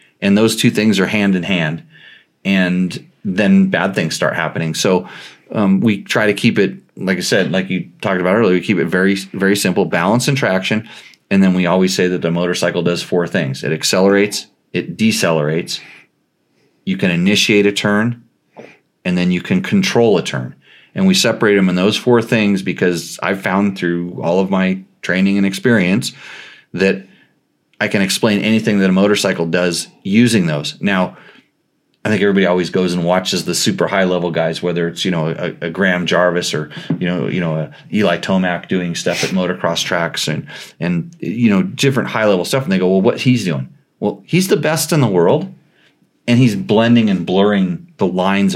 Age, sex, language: 30-49, male, English